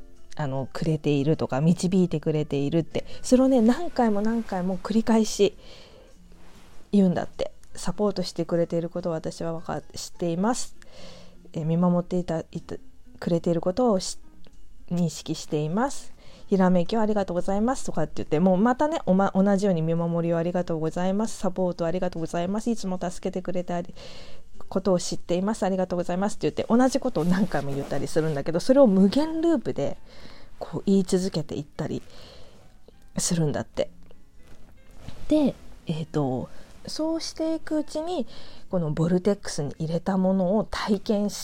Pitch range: 160-210 Hz